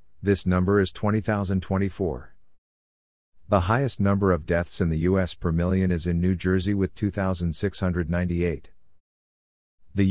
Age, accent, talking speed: 50-69, American, 125 wpm